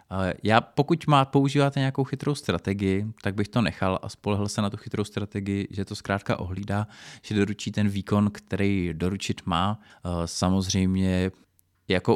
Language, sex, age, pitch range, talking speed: Czech, male, 20-39, 90-100 Hz, 155 wpm